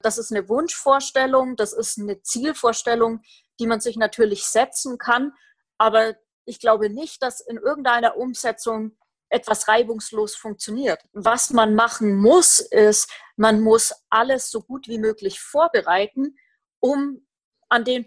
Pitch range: 210-250 Hz